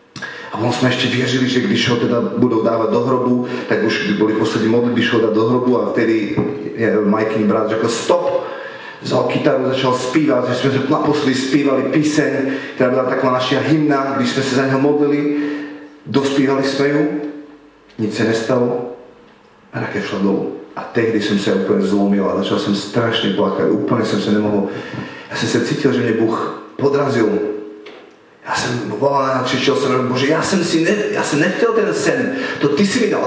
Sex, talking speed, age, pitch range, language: male, 185 wpm, 40-59, 125-175 Hz, Slovak